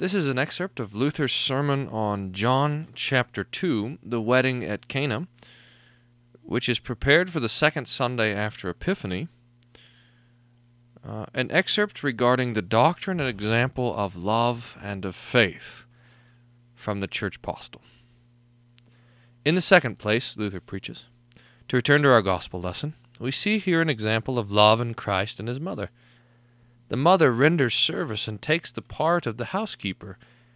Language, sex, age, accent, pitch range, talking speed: English, male, 40-59, American, 115-135 Hz, 150 wpm